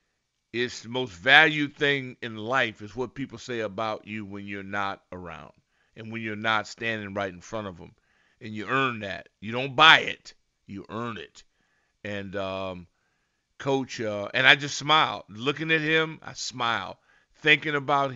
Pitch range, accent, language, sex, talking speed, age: 110-145 Hz, American, English, male, 175 wpm, 50-69